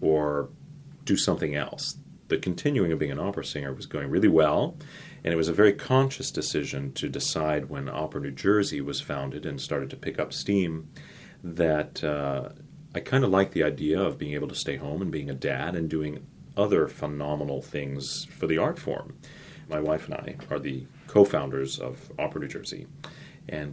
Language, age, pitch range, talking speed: English, 30-49, 70-85 Hz, 190 wpm